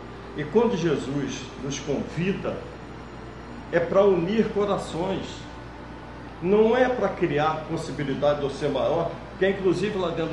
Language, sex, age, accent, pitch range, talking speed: Portuguese, male, 50-69, Brazilian, 125-165 Hz, 130 wpm